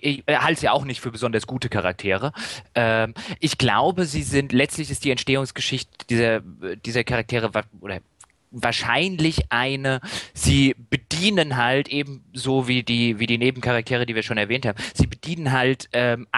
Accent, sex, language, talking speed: German, male, German, 160 wpm